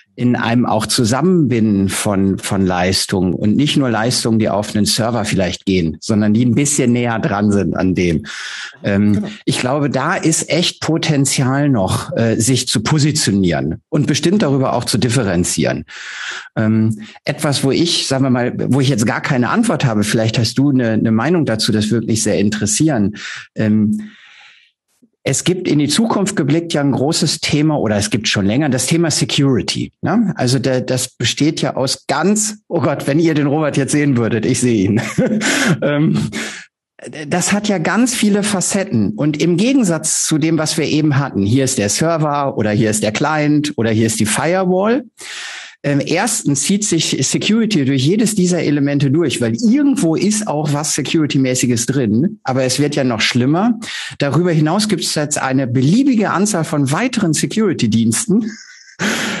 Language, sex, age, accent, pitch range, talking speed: German, male, 50-69, German, 115-165 Hz, 170 wpm